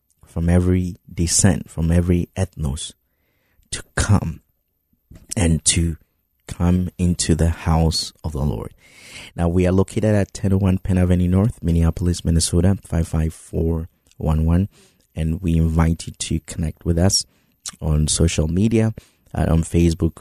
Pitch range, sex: 80-95 Hz, male